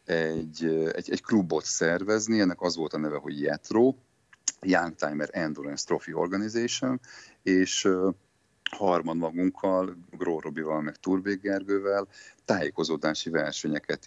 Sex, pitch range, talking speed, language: male, 90-125 Hz, 110 wpm, Hungarian